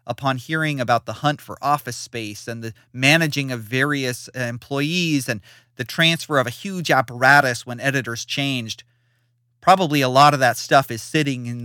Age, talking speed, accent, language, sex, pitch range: 30-49, 170 wpm, American, English, male, 120-150 Hz